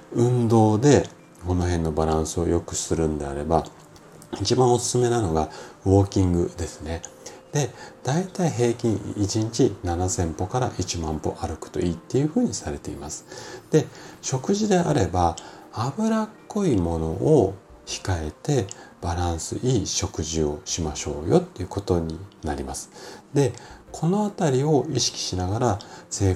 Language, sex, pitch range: Japanese, male, 85-120 Hz